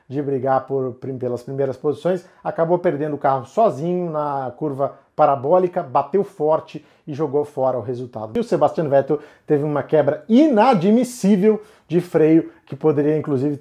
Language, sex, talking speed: Portuguese, male, 145 wpm